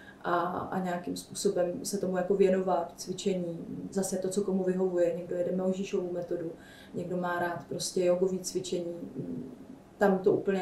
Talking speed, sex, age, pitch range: 155 wpm, female, 30-49, 180-200 Hz